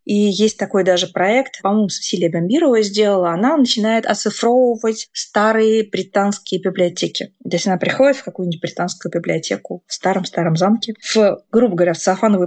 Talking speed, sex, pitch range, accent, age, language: 145 wpm, female, 185-240 Hz, native, 20-39, Russian